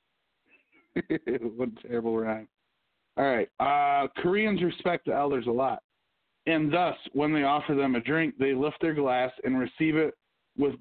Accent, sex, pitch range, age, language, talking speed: American, male, 130-170 Hz, 40-59, English, 160 wpm